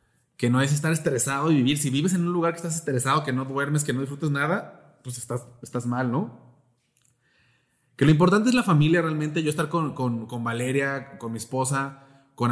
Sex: male